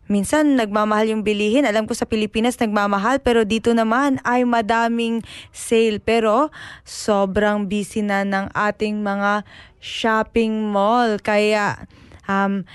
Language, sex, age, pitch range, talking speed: Filipino, female, 20-39, 210-245 Hz, 120 wpm